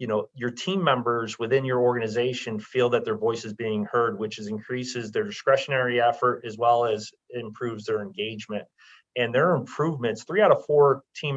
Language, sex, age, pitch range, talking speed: English, male, 30-49, 110-130 Hz, 185 wpm